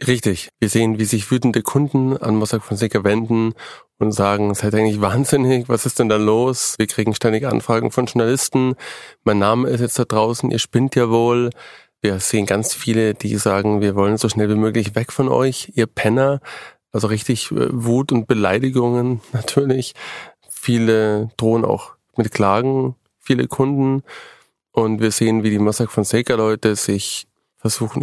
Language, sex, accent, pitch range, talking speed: German, male, German, 110-125 Hz, 170 wpm